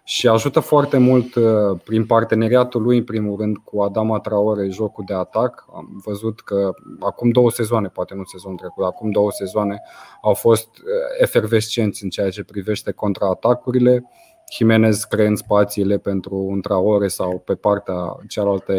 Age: 20-39